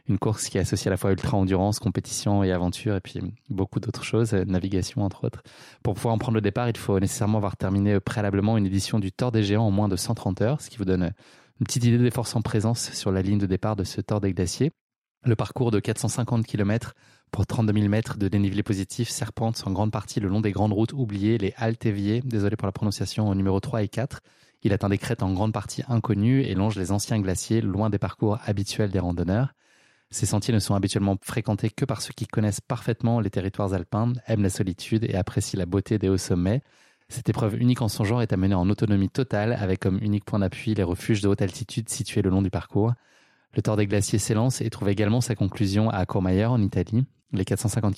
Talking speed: 230 wpm